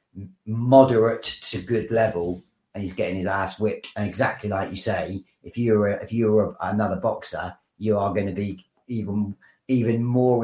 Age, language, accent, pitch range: 30-49, English, British, 100-130 Hz